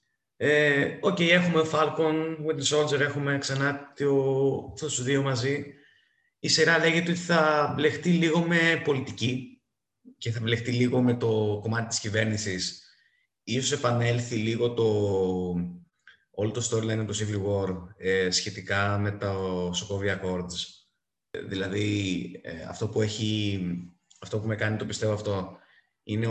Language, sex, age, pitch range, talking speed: Greek, male, 20-39, 100-120 Hz, 130 wpm